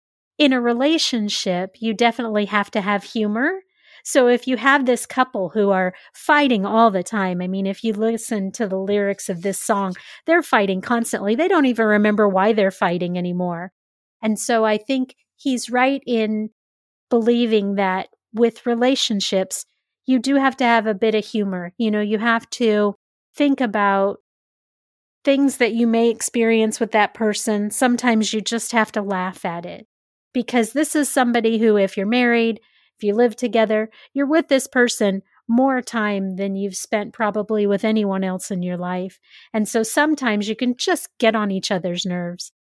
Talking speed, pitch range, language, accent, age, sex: 175 wpm, 200-240 Hz, English, American, 40-59, female